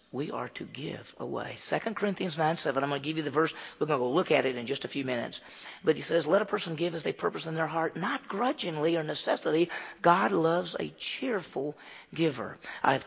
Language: English